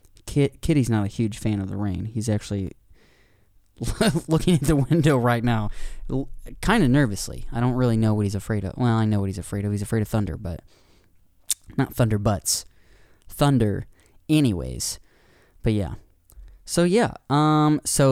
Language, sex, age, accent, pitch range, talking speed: English, male, 20-39, American, 105-135 Hz, 165 wpm